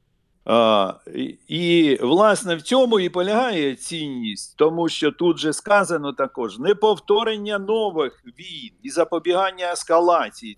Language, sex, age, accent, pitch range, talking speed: Ukrainian, male, 50-69, native, 145-205 Hz, 115 wpm